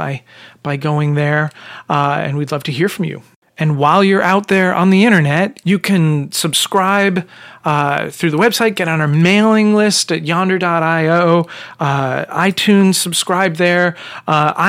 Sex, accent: male, American